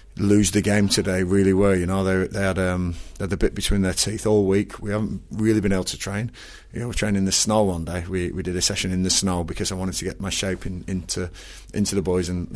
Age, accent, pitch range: 30-49, British, 90-100 Hz